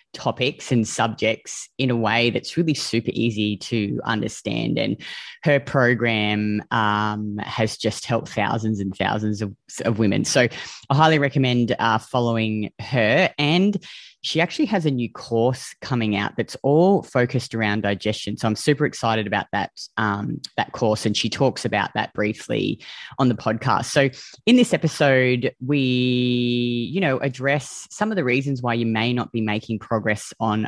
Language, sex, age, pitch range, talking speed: English, female, 20-39, 110-135 Hz, 165 wpm